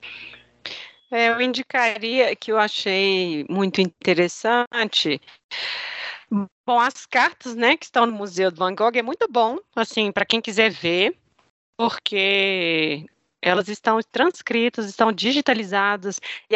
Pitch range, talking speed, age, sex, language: 200-250 Hz, 125 wpm, 40-59, female, Portuguese